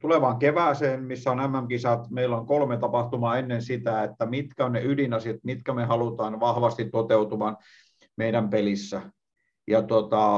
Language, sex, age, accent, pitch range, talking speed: Finnish, male, 50-69, native, 115-130 Hz, 145 wpm